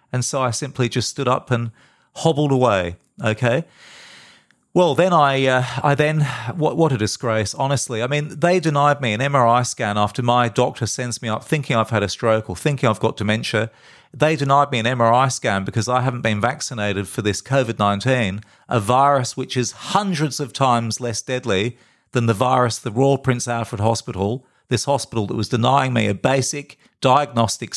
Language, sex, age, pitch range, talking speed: English, male, 40-59, 110-130 Hz, 185 wpm